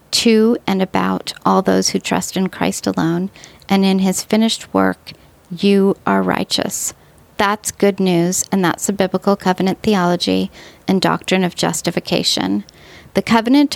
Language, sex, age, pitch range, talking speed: English, female, 40-59, 175-205 Hz, 145 wpm